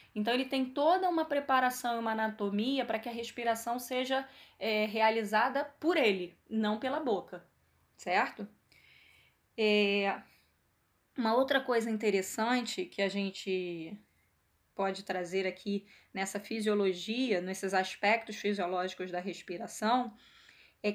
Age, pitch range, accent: 10-29, 200-245 Hz, Brazilian